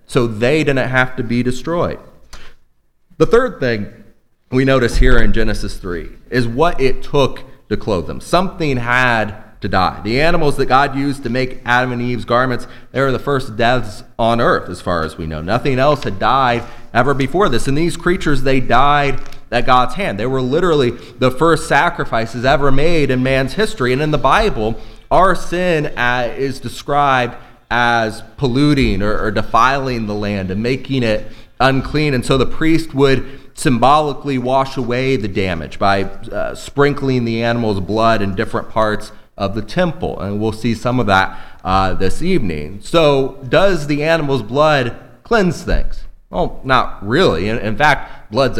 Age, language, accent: 30-49, English, American